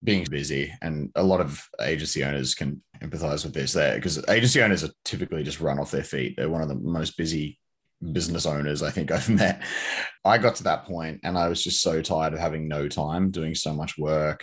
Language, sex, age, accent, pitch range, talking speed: English, male, 20-39, Australian, 70-85 Hz, 225 wpm